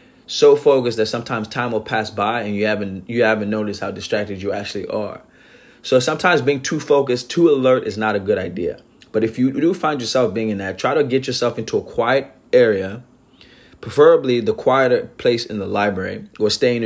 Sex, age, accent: male, 20-39, American